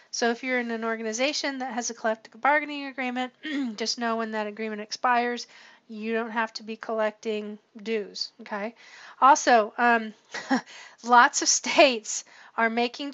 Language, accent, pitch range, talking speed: English, American, 225-260 Hz, 150 wpm